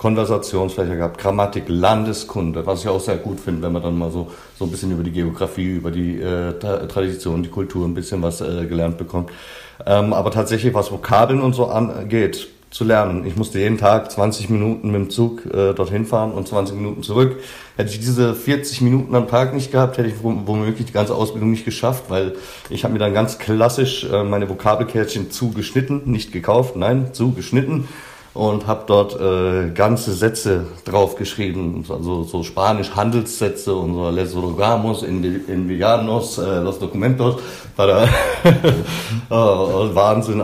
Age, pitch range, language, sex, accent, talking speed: 40-59, 90-110 Hz, German, male, German, 165 wpm